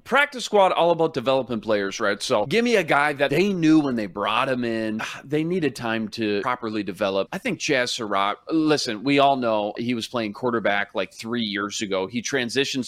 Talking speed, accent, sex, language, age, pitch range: 205 wpm, American, male, English, 30-49, 110-150 Hz